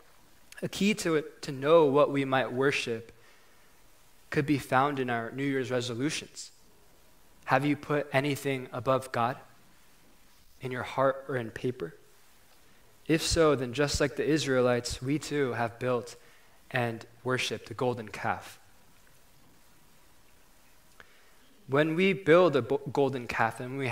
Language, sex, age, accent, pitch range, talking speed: English, male, 20-39, American, 120-140 Hz, 135 wpm